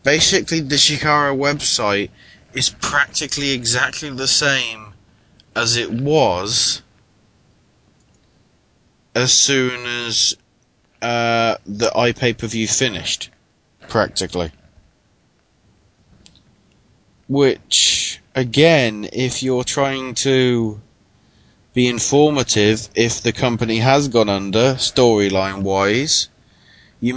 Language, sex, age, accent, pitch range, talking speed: English, male, 20-39, British, 115-145 Hz, 80 wpm